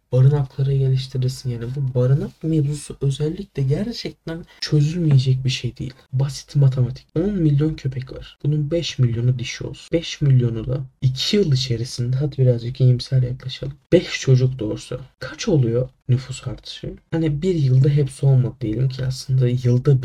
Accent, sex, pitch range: native, male, 125-150 Hz